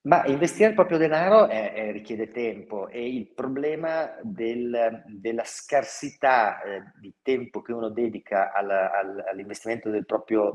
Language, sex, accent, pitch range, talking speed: Italian, male, native, 100-130 Hz, 120 wpm